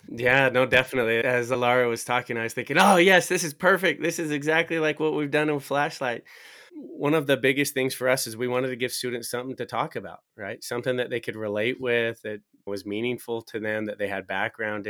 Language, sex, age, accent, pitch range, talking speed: English, male, 20-39, American, 105-130 Hz, 230 wpm